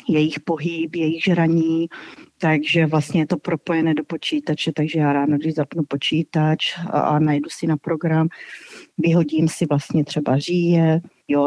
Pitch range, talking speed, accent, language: 150-170 Hz, 145 wpm, native, Czech